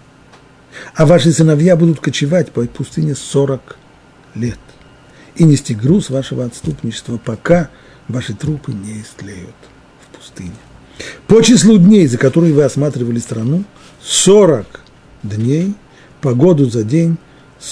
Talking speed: 115 wpm